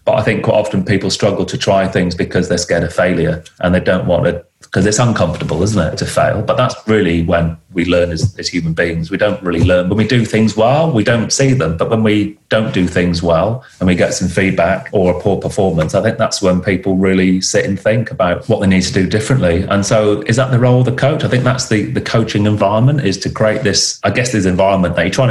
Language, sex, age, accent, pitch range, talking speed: English, male, 30-49, British, 90-105 Hz, 260 wpm